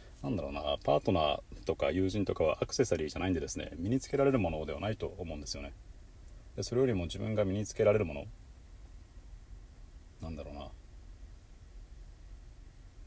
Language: Japanese